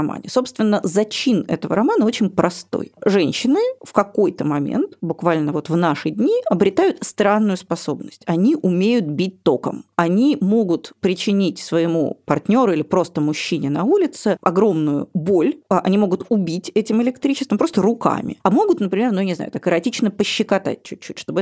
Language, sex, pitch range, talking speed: Russian, female, 170-230 Hz, 150 wpm